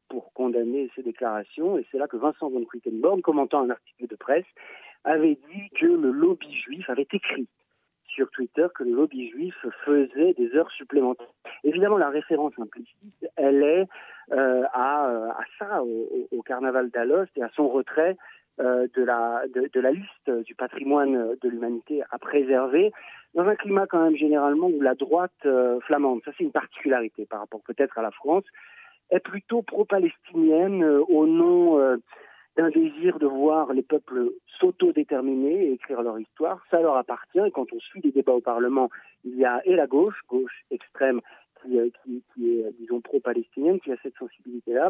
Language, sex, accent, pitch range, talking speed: French, male, French, 125-195 Hz, 180 wpm